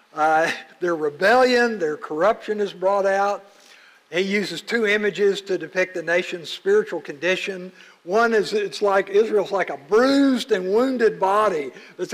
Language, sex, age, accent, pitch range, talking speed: English, male, 60-79, American, 180-225 Hz, 150 wpm